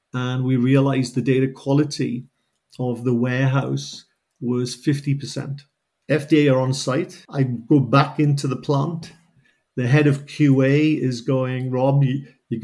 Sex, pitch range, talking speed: male, 130-150 Hz, 140 wpm